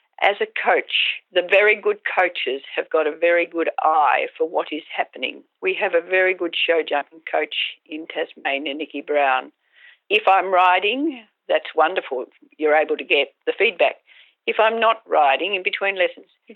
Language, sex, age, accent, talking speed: English, female, 50-69, Australian, 175 wpm